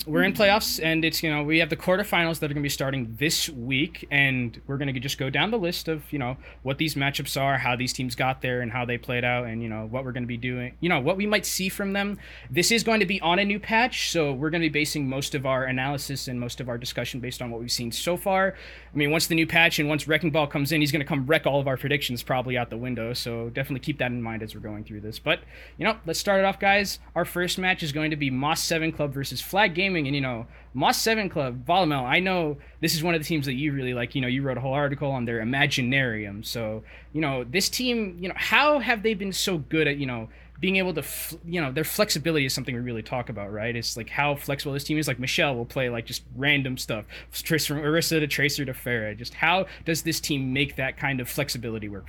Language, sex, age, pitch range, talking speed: English, male, 20-39, 125-165 Hz, 280 wpm